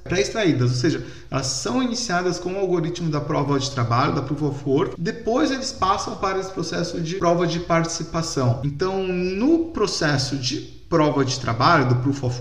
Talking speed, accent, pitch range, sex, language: 180 wpm, Brazilian, 140-180 Hz, male, Portuguese